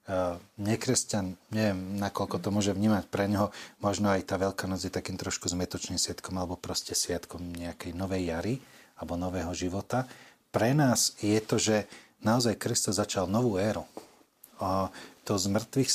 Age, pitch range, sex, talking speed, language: 30-49, 95-125 Hz, male, 150 wpm, Slovak